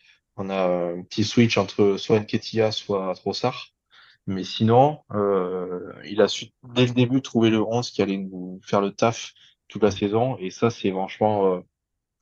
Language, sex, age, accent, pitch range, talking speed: French, male, 20-39, French, 95-115 Hz, 175 wpm